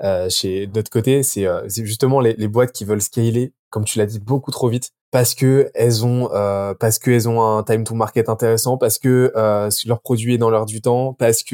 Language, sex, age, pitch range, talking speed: French, male, 20-39, 110-130 Hz, 250 wpm